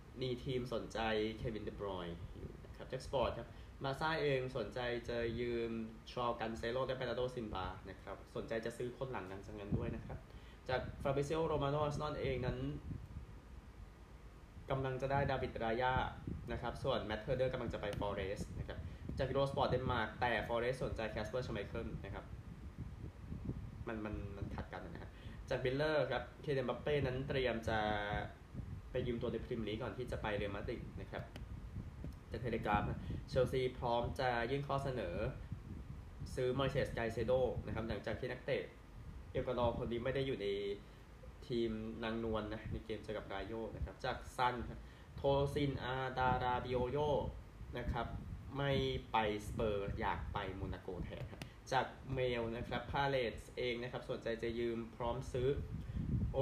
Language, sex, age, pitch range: Thai, male, 20-39, 105-130 Hz